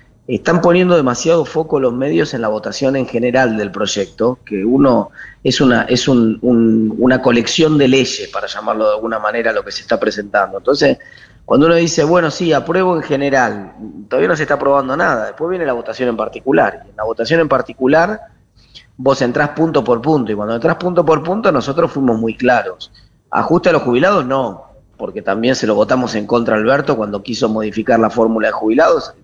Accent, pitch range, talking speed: Argentinian, 115-150 Hz, 200 wpm